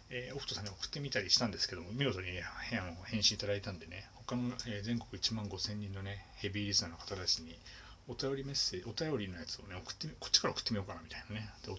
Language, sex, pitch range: Japanese, male, 95-115 Hz